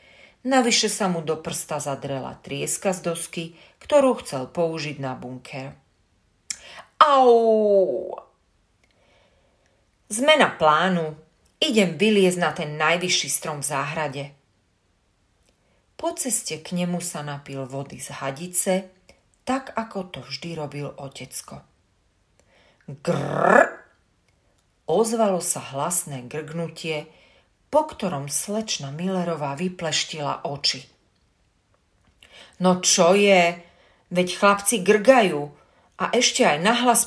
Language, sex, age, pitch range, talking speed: Slovak, female, 40-59, 135-190 Hz, 100 wpm